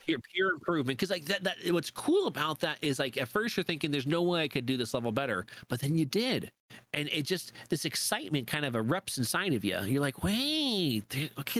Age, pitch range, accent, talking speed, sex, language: 40-59, 130-175 Hz, American, 240 wpm, male, English